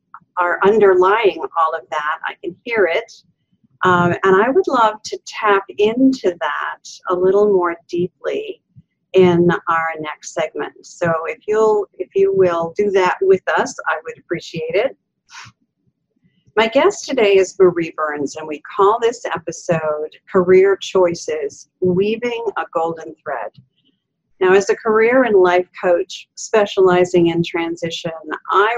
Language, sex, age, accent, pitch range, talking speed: English, female, 50-69, American, 170-210 Hz, 140 wpm